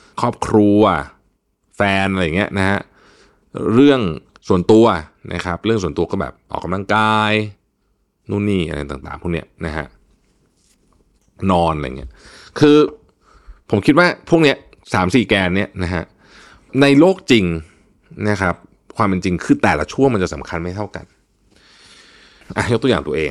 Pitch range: 90-115 Hz